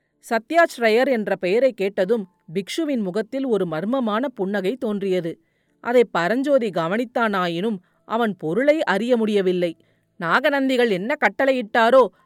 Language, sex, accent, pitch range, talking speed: Tamil, female, native, 195-265 Hz, 100 wpm